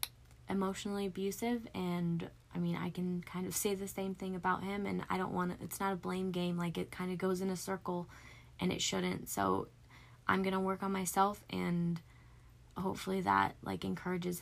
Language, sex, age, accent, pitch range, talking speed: English, female, 20-39, American, 160-195 Hz, 200 wpm